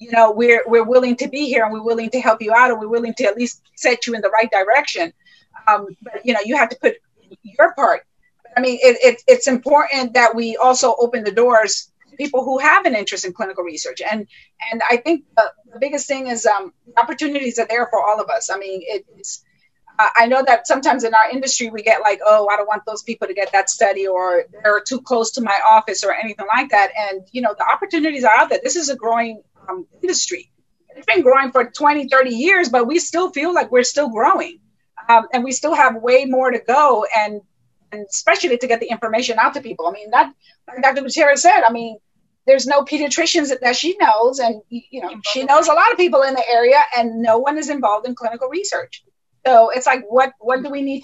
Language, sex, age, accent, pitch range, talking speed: English, female, 30-49, American, 220-280 Hz, 235 wpm